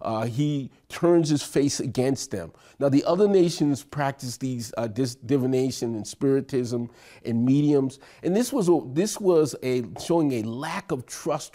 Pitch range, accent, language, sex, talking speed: 120-170 Hz, American, English, male, 165 wpm